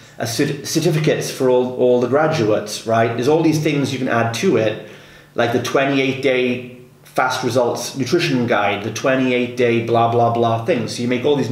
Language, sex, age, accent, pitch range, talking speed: English, male, 30-49, British, 115-140 Hz, 195 wpm